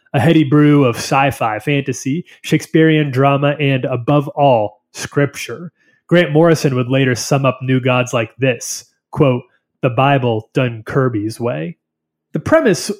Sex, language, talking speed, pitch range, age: male, English, 140 wpm, 120-145 Hz, 30-49